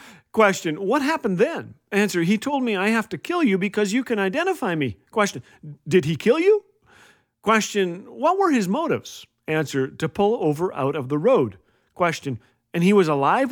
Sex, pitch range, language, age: male, 150-215 Hz, English, 40-59